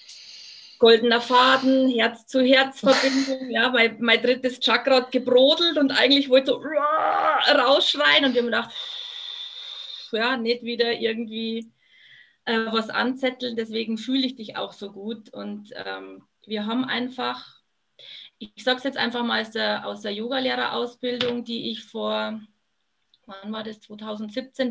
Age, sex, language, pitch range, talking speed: 20-39, female, German, 210-250 Hz, 135 wpm